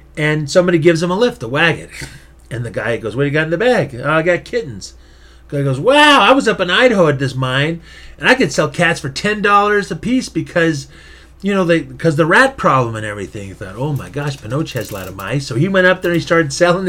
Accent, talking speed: American, 265 wpm